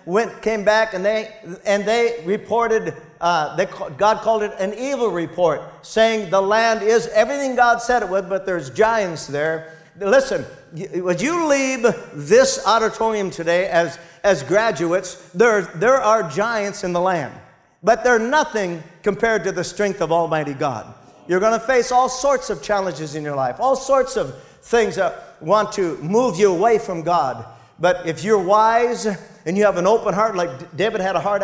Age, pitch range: 50-69, 170-215 Hz